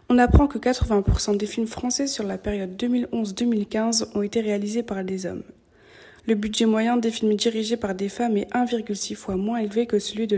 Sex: female